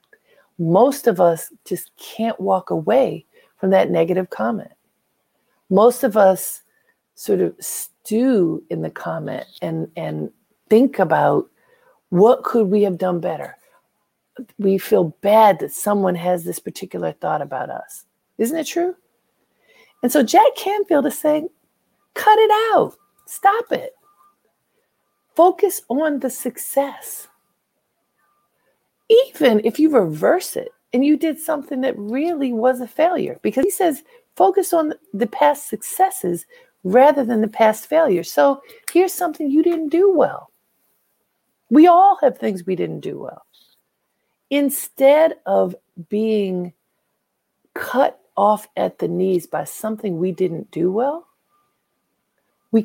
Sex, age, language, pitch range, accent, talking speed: female, 50-69, English, 200-330 Hz, American, 130 wpm